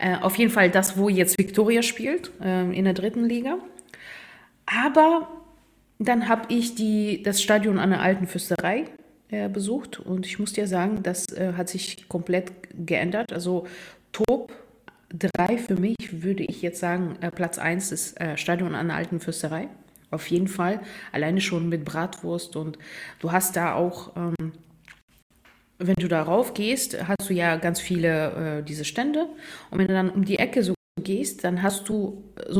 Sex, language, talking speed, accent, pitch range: female, German, 175 wpm, German, 175-215 Hz